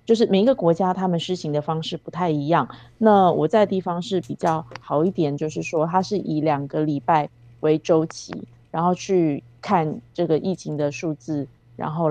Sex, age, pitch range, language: female, 20-39, 145-175 Hz, Chinese